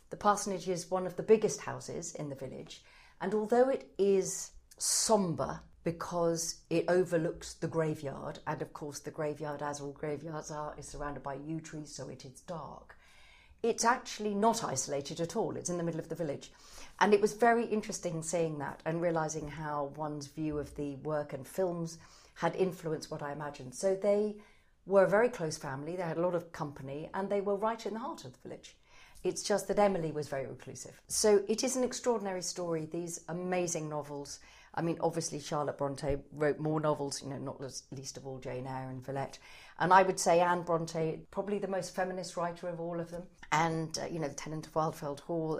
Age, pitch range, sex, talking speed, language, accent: 40-59, 145-185 Hz, female, 205 wpm, English, British